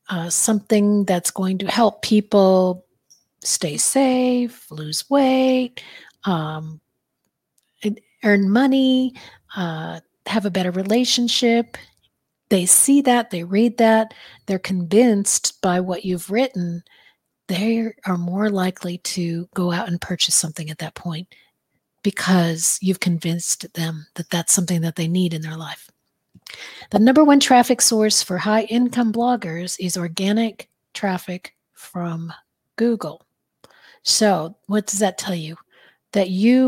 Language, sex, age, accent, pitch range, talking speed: English, female, 40-59, American, 175-220 Hz, 130 wpm